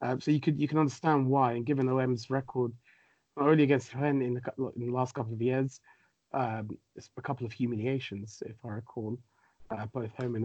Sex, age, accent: male, 30-49, British